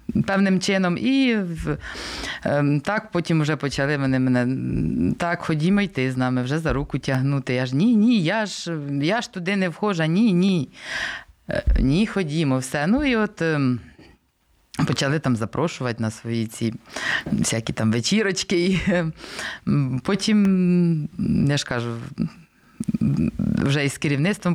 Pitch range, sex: 130-185 Hz, female